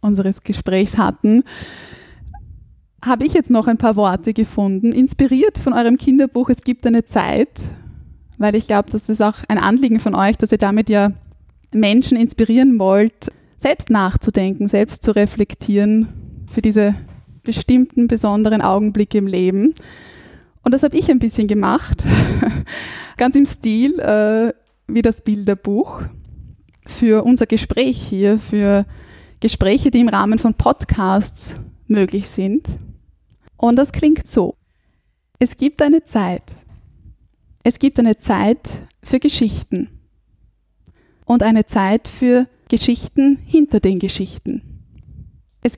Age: 20-39